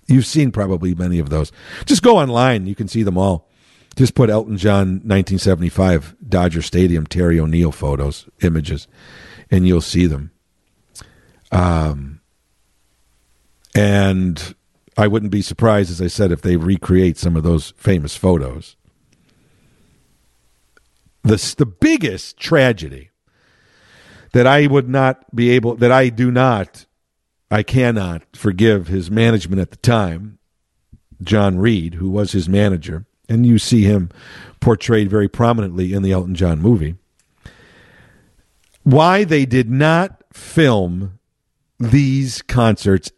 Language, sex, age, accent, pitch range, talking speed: English, male, 50-69, American, 90-125 Hz, 130 wpm